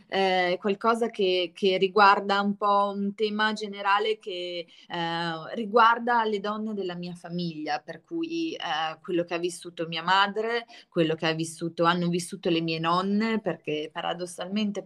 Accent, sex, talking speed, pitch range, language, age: native, female, 145 wpm, 165-200 Hz, Italian, 20-39